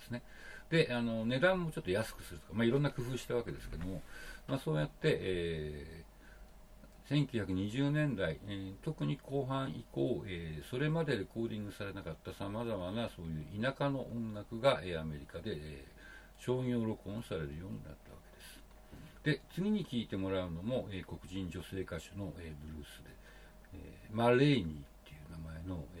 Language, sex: Japanese, male